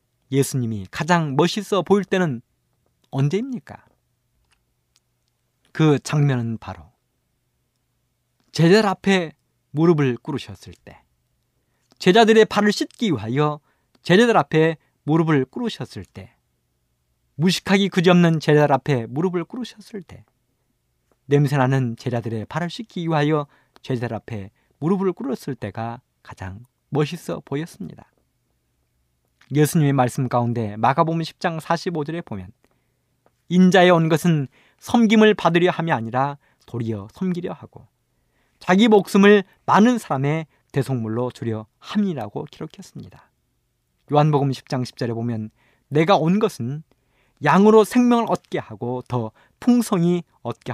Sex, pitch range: male, 120-180 Hz